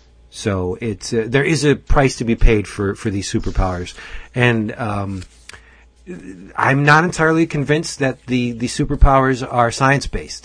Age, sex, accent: 40-59, male, American